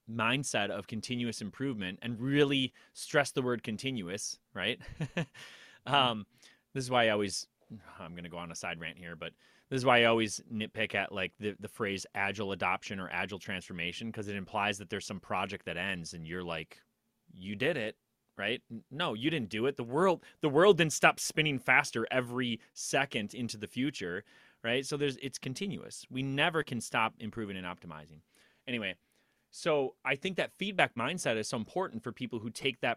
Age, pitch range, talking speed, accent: 30-49, 105-135 Hz, 185 wpm, American